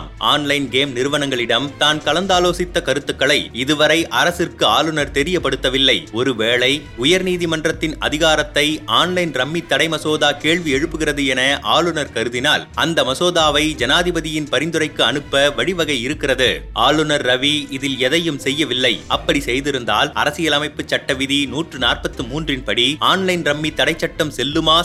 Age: 30-49